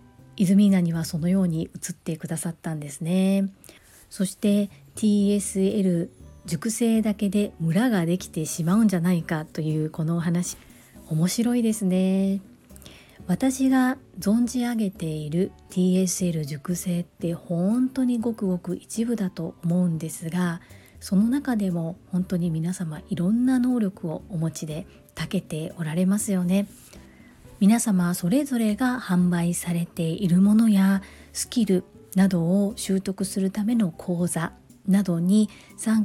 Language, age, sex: Japanese, 40-59, female